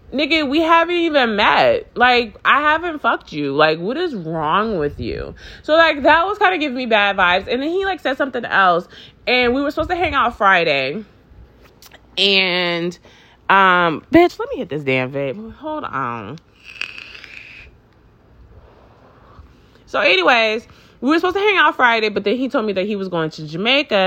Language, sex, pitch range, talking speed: English, female, 175-275 Hz, 180 wpm